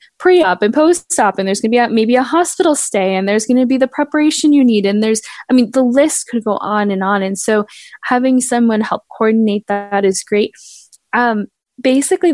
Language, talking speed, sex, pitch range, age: English, 215 wpm, female, 195-245 Hz, 10-29